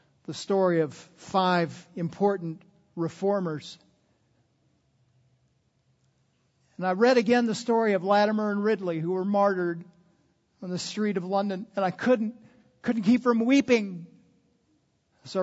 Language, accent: English, American